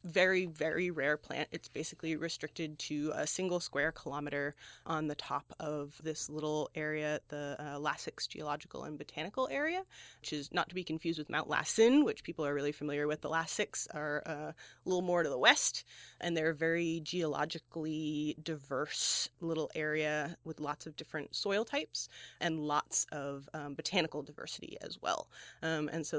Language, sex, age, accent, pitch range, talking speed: English, female, 20-39, American, 150-170 Hz, 170 wpm